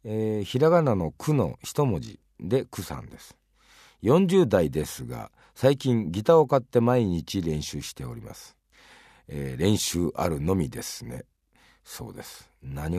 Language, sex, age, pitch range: Japanese, male, 50-69, 80-125 Hz